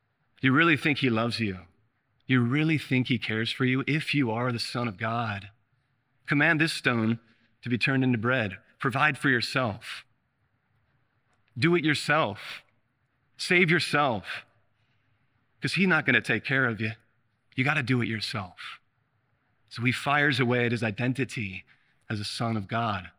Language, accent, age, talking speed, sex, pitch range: English, American, 40-59, 160 wpm, male, 110-125 Hz